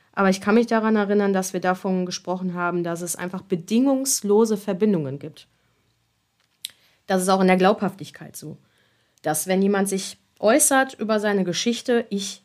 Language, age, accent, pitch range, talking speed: German, 30-49, German, 165-200 Hz, 160 wpm